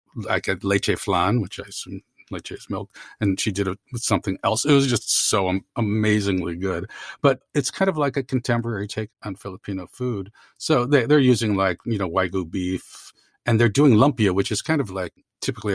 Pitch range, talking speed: 100-125 Hz, 205 wpm